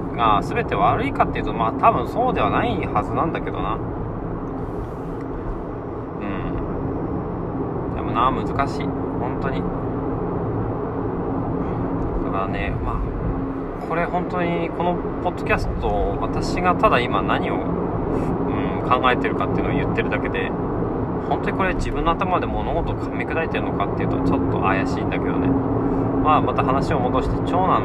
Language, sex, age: Japanese, male, 20-39